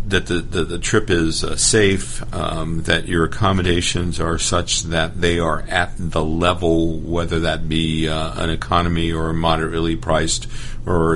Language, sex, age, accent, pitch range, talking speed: English, male, 50-69, American, 80-95 Hz, 165 wpm